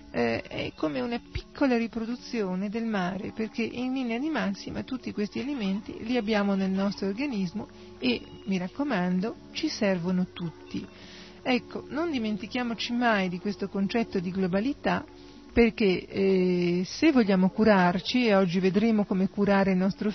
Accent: native